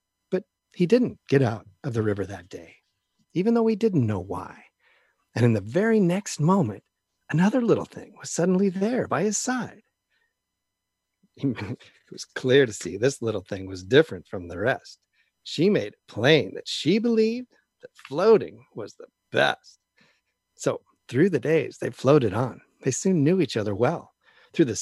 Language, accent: English, American